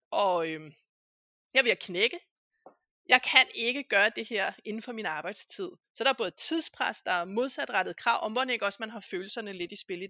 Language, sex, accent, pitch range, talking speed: Danish, female, native, 215-285 Hz, 215 wpm